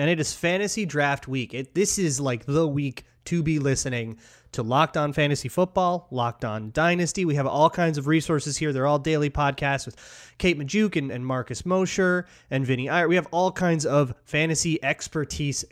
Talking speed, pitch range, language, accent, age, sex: 195 wpm, 125-160 Hz, English, American, 30-49, male